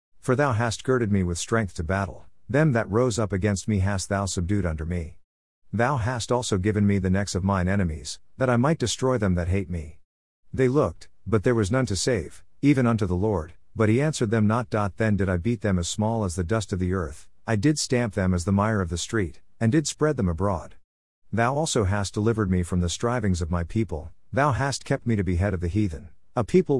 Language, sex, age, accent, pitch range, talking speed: English, male, 50-69, American, 90-120 Hz, 235 wpm